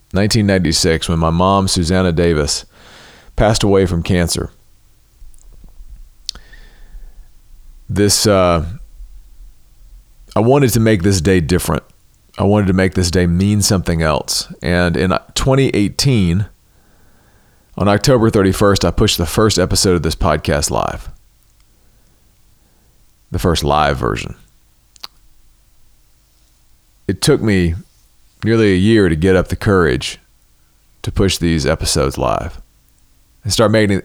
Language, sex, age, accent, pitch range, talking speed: English, male, 40-59, American, 90-110 Hz, 115 wpm